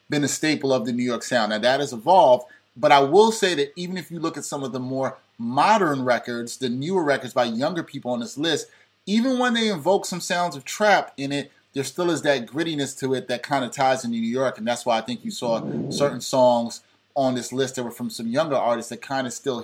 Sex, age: male, 30-49